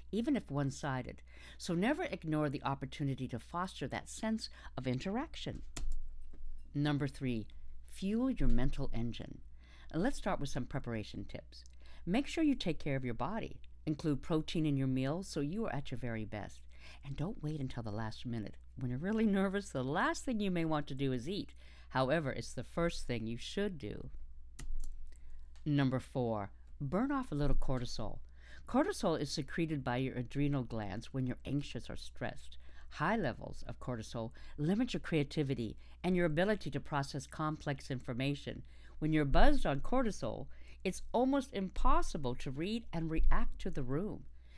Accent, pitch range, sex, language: American, 110-170 Hz, female, English